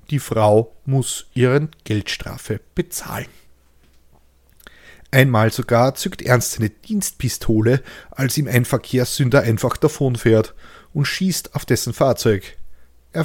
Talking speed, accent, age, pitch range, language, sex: 110 wpm, German, 40-59, 110-140 Hz, German, male